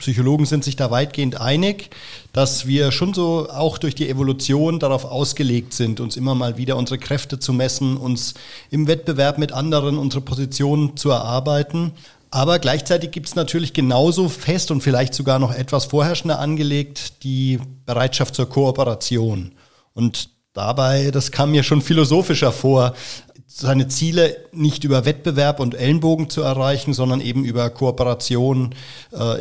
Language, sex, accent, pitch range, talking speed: German, male, German, 125-150 Hz, 150 wpm